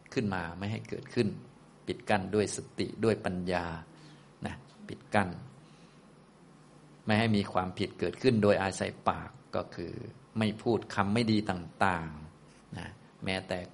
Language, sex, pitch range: Thai, male, 90-115 Hz